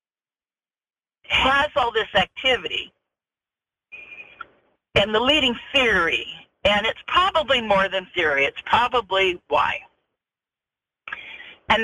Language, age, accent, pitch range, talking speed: English, 50-69, American, 180-250 Hz, 90 wpm